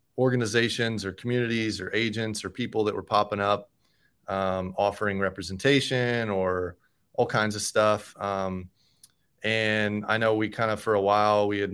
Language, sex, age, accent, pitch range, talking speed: English, male, 30-49, American, 100-115 Hz, 160 wpm